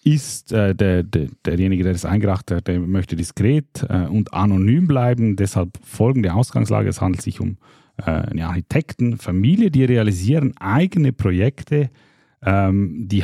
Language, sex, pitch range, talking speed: German, male, 95-120 Hz, 135 wpm